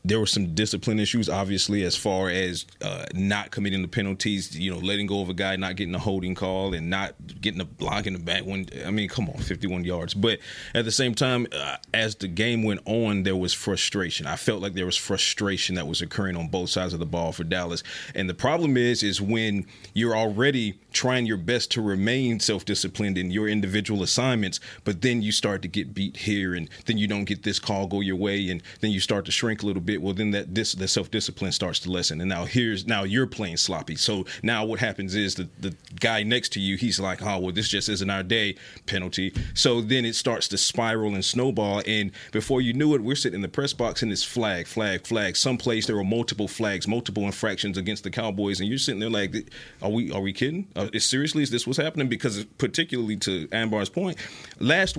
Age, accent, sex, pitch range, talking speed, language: 30-49, American, male, 95-115 Hz, 230 wpm, English